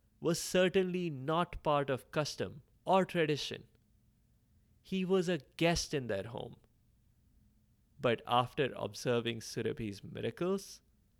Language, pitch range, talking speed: English, 110-150 Hz, 105 wpm